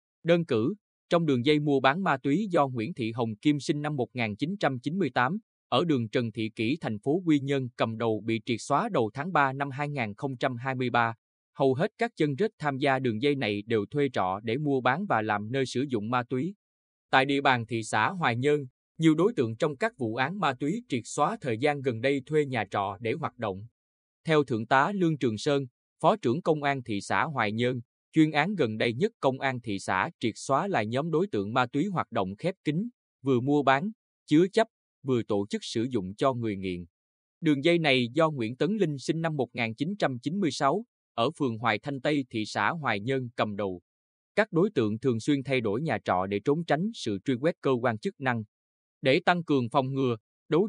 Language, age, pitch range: Vietnamese, 20-39, 115-150 Hz